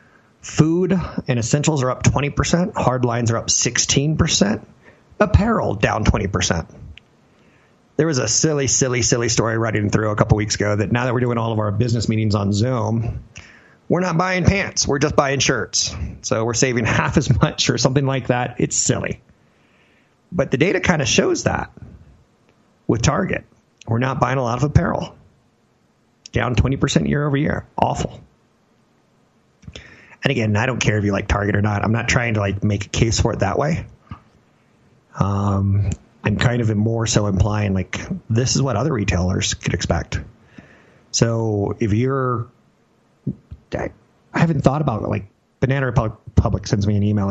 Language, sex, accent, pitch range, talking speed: English, male, American, 105-135 Hz, 170 wpm